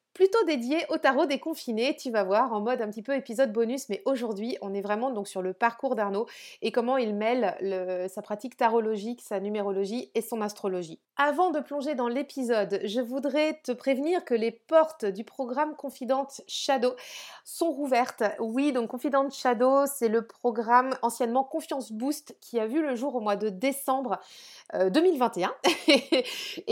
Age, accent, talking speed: 30-49, French, 175 wpm